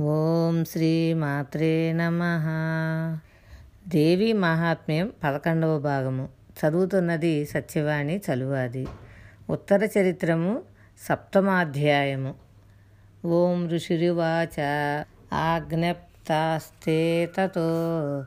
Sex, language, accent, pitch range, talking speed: female, Telugu, native, 145-170 Hz, 55 wpm